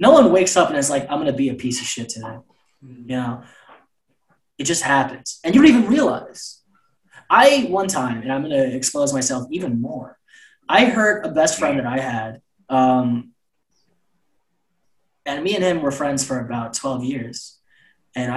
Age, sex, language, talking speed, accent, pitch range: 20-39, male, English, 180 wpm, American, 130-200 Hz